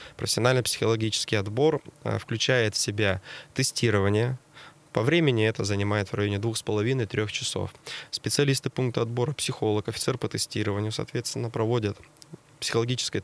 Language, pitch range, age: Russian, 105-140 Hz, 20-39